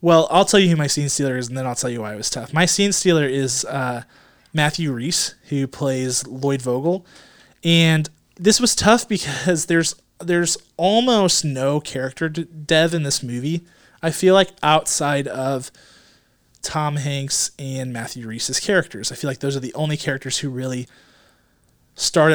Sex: male